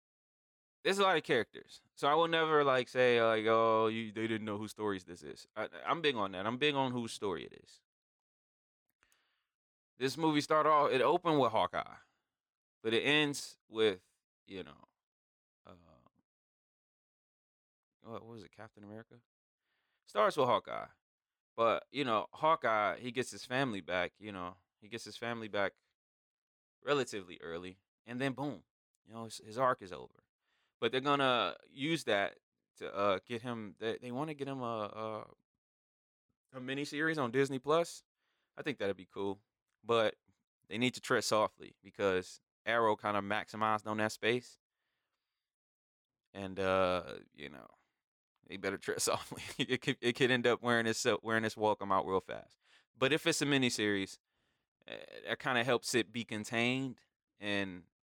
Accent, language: American, English